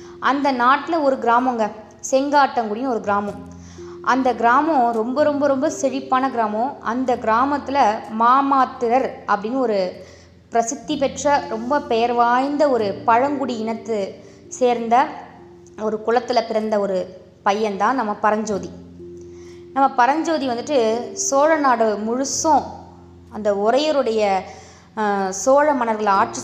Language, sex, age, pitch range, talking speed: Tamil, female, 20-39, 205-265 Hz, 100 wpm